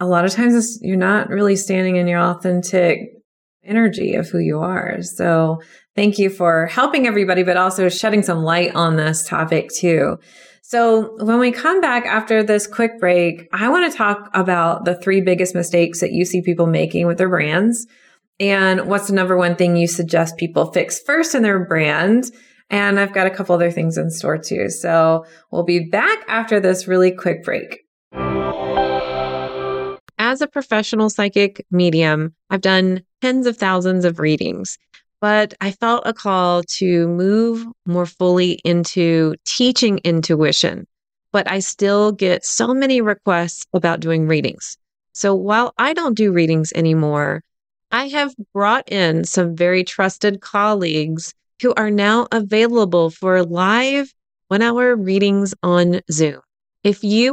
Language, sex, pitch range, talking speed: English, female, 170-215 Hz, 160 wpm